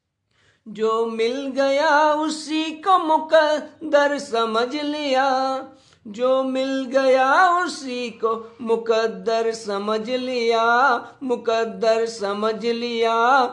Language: Hindi